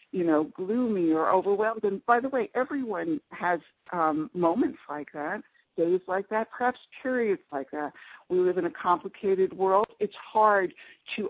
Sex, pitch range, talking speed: female, 160-210 Hz, 165 wpm